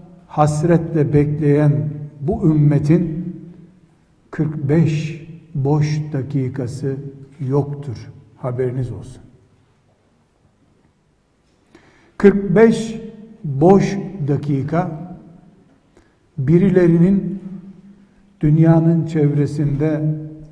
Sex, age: male, 60-79